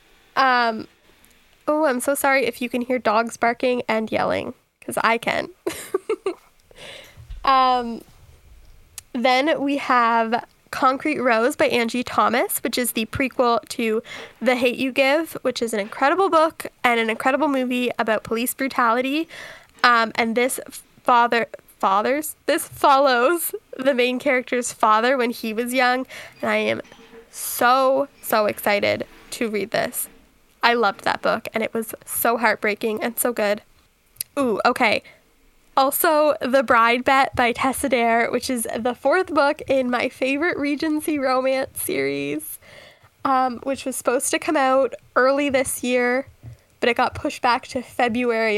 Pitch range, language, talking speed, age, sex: 235-275 Hz, English, 145 wpm, 10-29, female